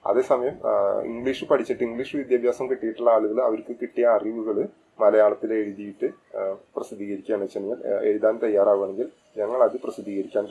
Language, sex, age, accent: English, male, 30-49, Indian